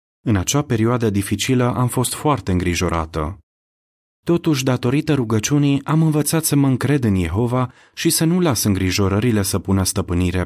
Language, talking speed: Romanian, 150 wpm